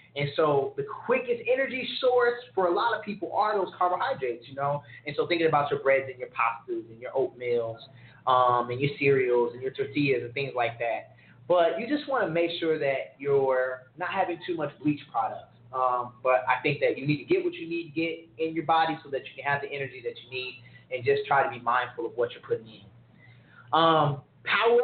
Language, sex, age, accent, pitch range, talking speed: English, male, 20-39, American, 135-205 Hz, 220 wpm